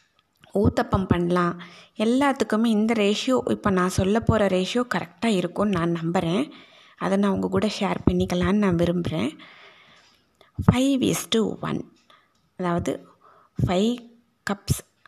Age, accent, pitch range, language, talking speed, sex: 20-39, native, 185-230 Hz, Tamil, 105 wpm, female